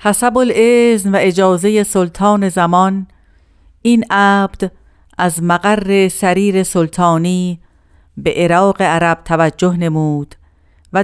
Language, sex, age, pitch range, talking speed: Persian, female, 50-69, 160-195 Hz, 100 wpm